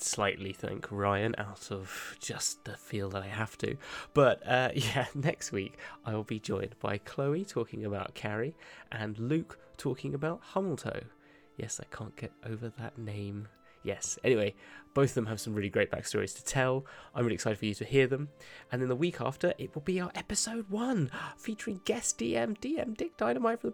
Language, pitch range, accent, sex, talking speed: English, 110-160 Hz, British, male, 195 wpm